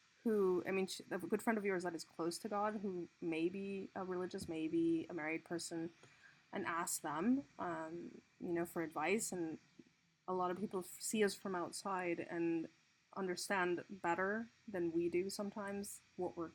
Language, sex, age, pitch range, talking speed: English, female, 20-39, 170-215 Hz, 175 wpm